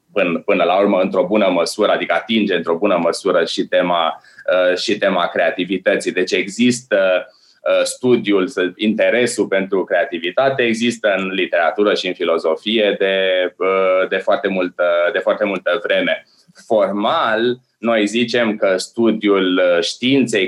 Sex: male